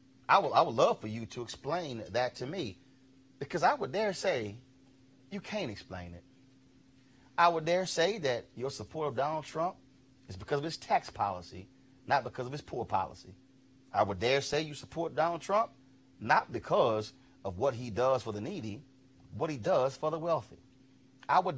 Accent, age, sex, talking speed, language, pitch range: American, 30-49, male, 190 wpm, English, 110-140 Hz